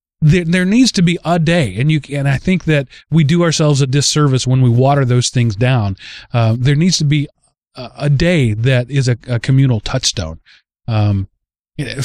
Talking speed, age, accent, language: 195 wpm, 30-49, American, English